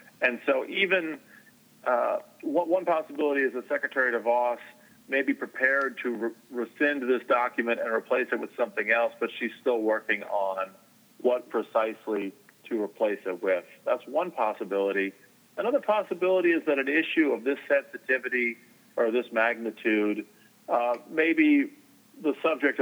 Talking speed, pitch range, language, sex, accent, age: 145 wpm, 115-150 Hz, English, male, American, 40-59